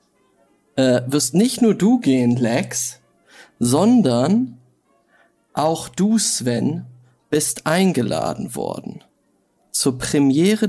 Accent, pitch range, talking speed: German, 130-190 Hz, 90 wpm